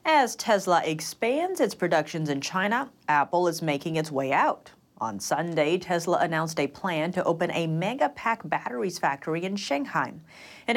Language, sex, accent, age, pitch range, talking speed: English, female, American, 40-59, 155-225 Hz, 155 wpm